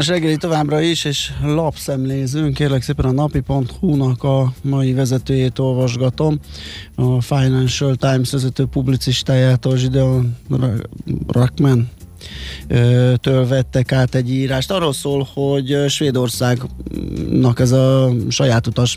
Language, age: Hungarian, 20-39